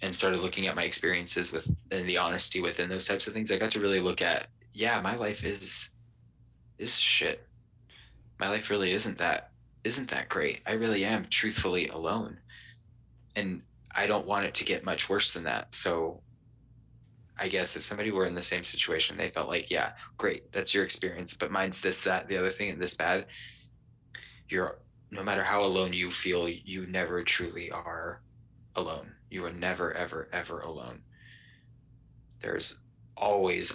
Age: 20-39